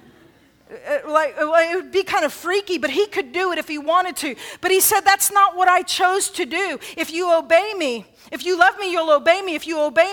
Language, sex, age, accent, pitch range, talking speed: English, female, 40-59, American, 290-355 Hz, 245 wpm